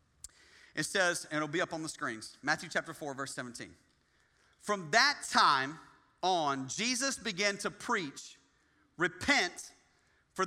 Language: English